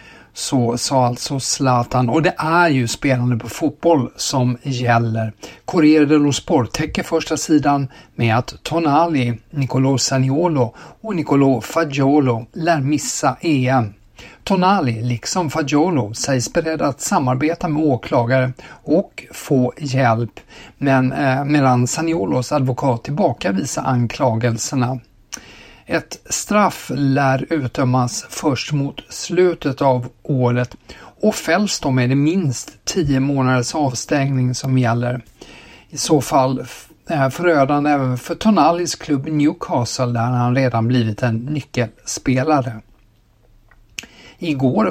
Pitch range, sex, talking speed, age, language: 125-155 Hz, male, 115 wpm, 60-79, Swedish